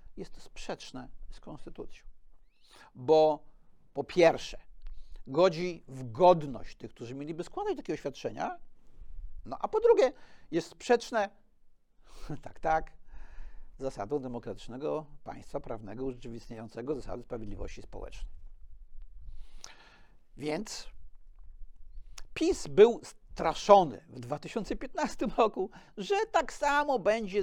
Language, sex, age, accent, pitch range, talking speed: Polish, male, 50-69, native, 125-200 Hz, 95 wpm